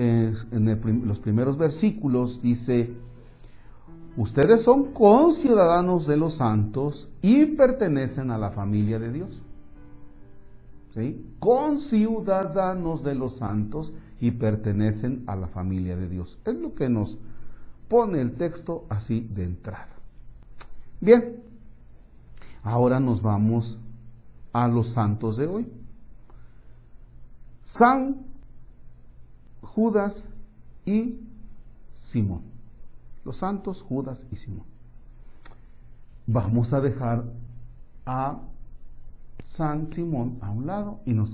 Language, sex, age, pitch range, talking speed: Spanish, male, 50-69, 105-150 Hz, 100 wpm